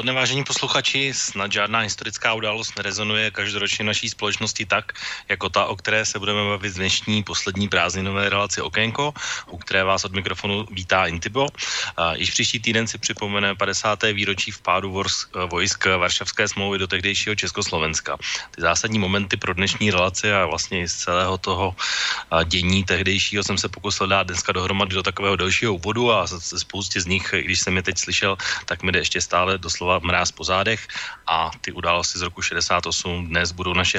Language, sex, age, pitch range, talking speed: Slovak, male, 30-49, 90-105 Hz, 170 wpm